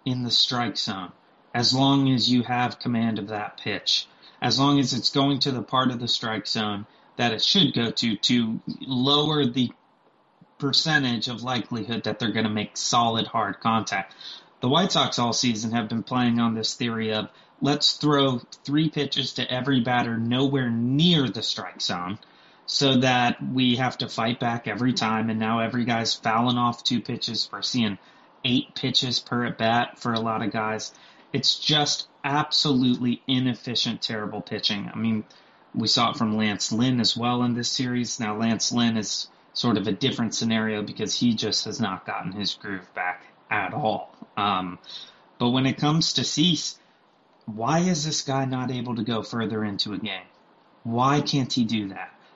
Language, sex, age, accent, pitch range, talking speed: English, male, 30-49, American, 115-135 Hz, 180 wpm